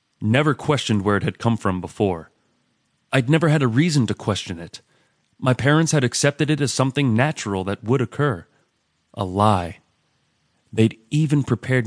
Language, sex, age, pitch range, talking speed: English, male, 30-49, 100-130 Hz, 160 wpm